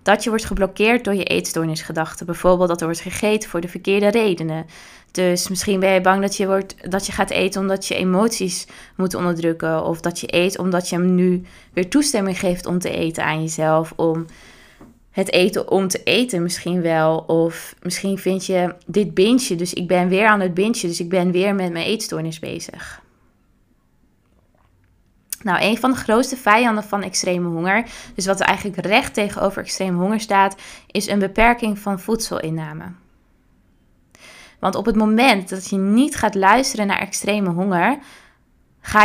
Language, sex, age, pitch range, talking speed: Dutch, female, 20-39, 175-205 Hz, 170 wpm